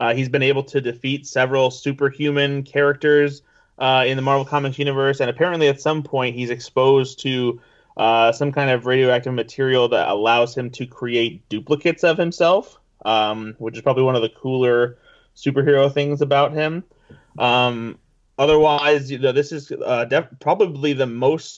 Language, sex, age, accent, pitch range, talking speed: English, male, 30-49, American, 115-140 Hz, 165 wpm